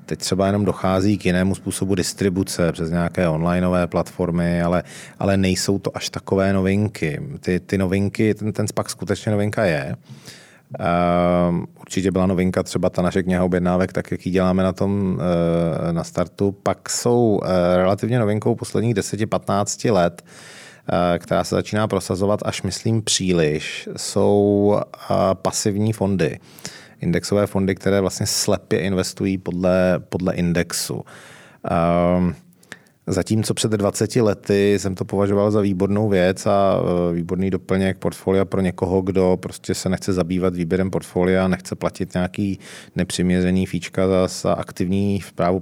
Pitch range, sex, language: 90-100 Hz, male, Czech